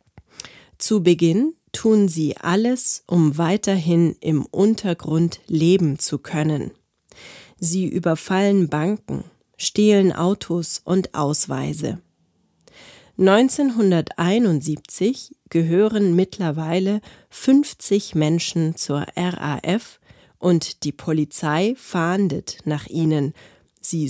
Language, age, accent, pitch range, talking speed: German, 30-49, German, 155-195 Hz, 80 wpm